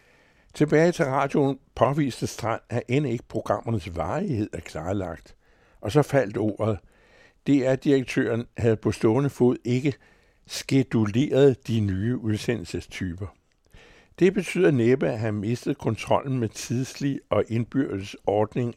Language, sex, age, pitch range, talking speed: Danish, male, 60-79, 105-130 Hz, 130 wpm